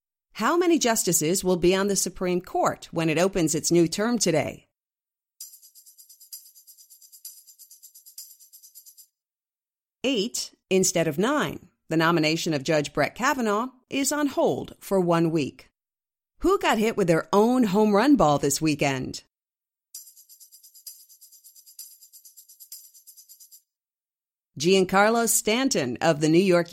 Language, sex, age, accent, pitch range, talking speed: English, female, 50-69, American, 160-225 Hz, 110 wpm